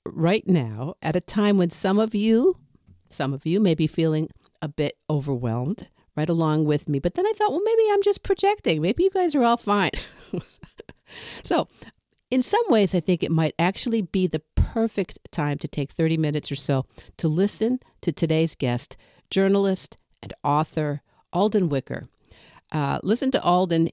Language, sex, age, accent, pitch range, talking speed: English, female, 50-69, American, 140-185 Hz, 175 wpm